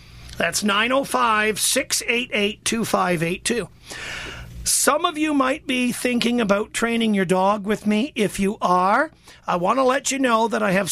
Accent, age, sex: American, 50-69, male